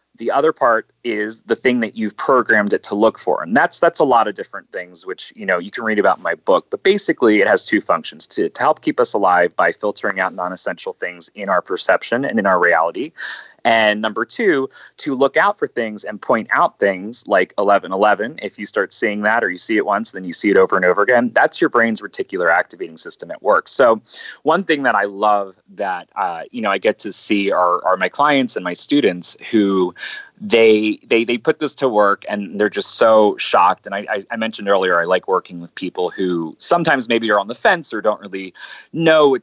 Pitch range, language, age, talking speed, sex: 95-130 Hz, English, 30-49, 235 wpm, male